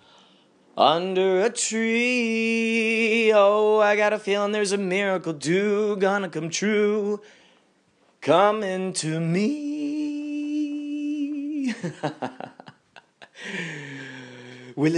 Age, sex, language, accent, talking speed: 30-49, male, English, American, 75 wpm